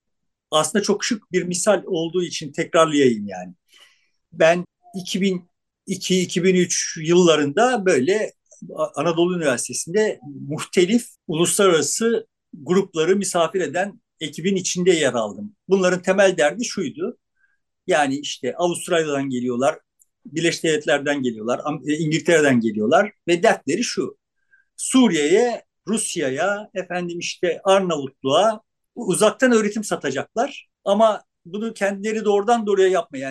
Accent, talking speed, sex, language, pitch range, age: native, 95 wpm, male, Turkish, 165-215 Hz, 50-69